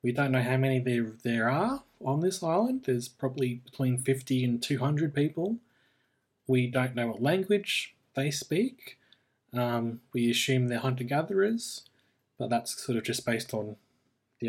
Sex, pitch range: male, 120-145 Hz